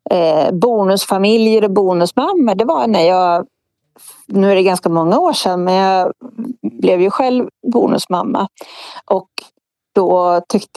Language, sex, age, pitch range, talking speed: Swedish, female, 30-49, 185-245 Hz, 125 wpm